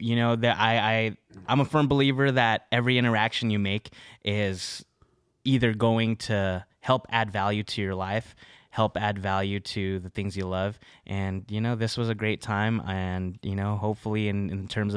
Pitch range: 95-115 Hz